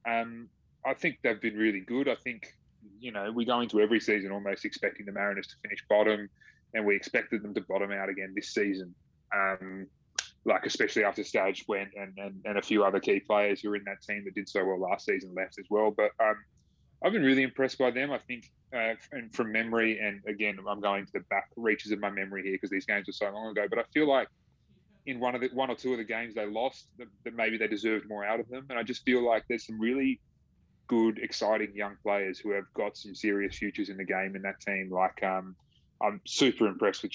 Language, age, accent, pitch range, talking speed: English, 20-39, Australian, 100-115 Hz, 240 wpm